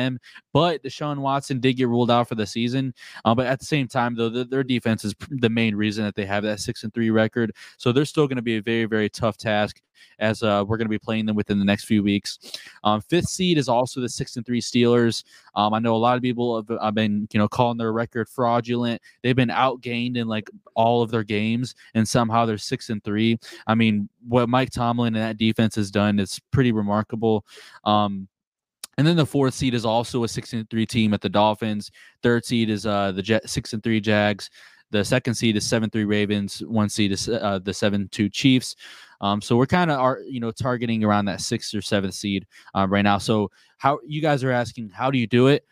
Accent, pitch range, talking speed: American, 105-125 Hz, 225 wpm